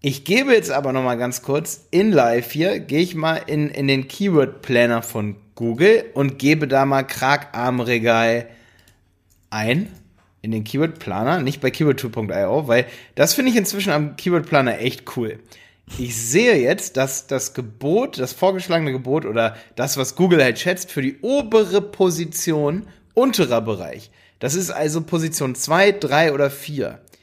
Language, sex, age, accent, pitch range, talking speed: German, male, 30-49, German, 120-170 Hz, 160 wpm